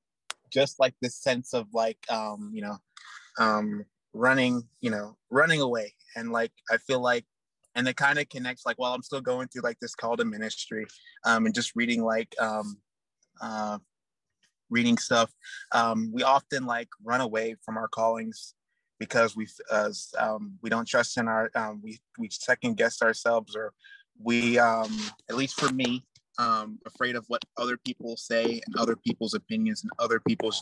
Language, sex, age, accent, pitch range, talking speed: English, male, 20-39, American, 110-135 Hz, 180 wpm